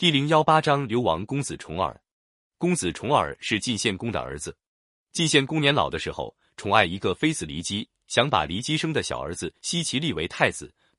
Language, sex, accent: Chinese, male, native